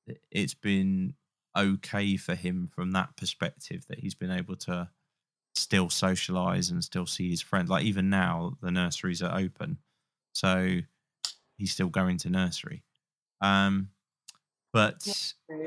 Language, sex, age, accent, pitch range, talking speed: English, male, 20-39, British, 95-130 Hz, 135 wpm